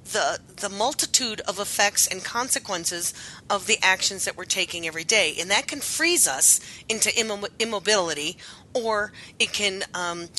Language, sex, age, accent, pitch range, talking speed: English, female, 40-59, American, 185-230 Hz, 150 wpm